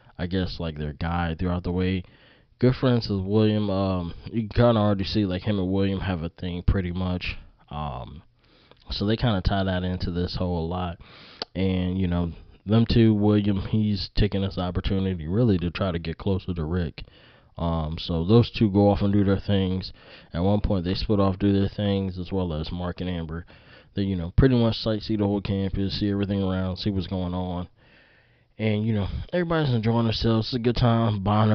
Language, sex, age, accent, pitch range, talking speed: English, male, 20-39, American, 90-105 Hz, 205 wpm